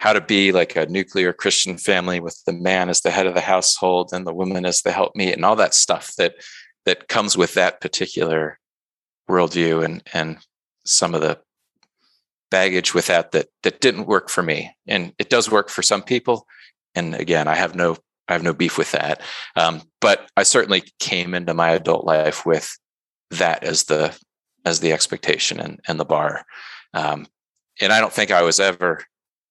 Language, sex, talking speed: English, male, 195 wpm